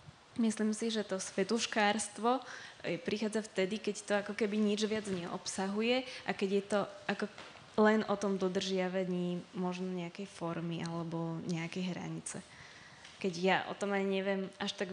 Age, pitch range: 20-39, 180-205 Hz